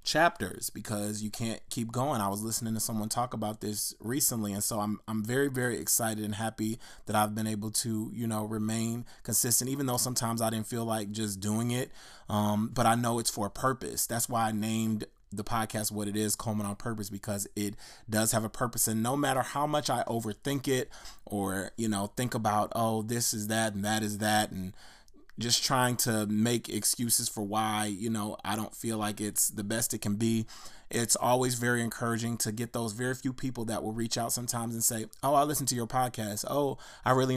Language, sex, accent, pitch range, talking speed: English, male, American, 105-125 Hz, 220 wpm